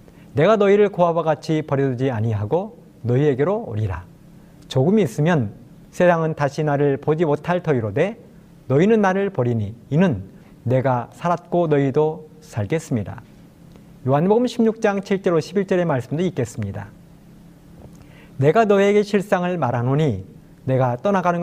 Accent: native